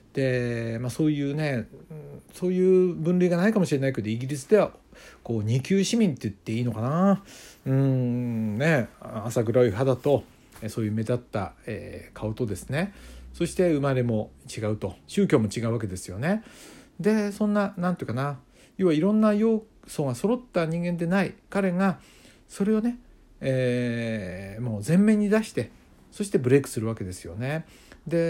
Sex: male